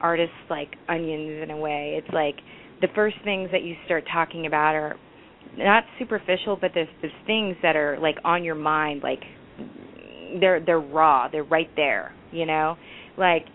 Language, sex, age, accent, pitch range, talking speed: English, female, 30-49, American, 155-185 Hz, 175 wpm